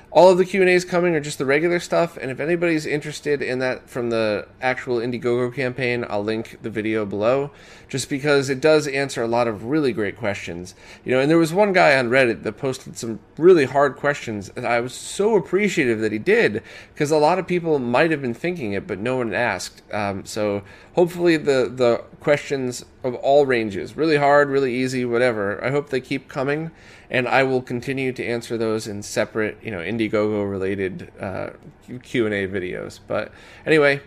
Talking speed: 195 wpm